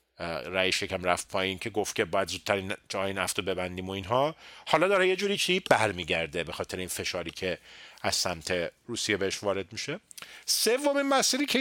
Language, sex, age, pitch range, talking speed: Persian, male, 40-59, 100-145 Hz, 180 wpm